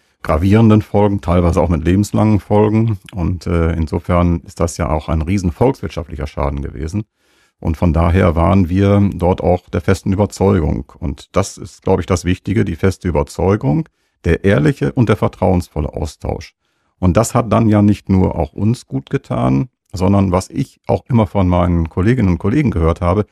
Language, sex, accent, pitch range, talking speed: German, male, German, 85-110 Hz, 170 wpm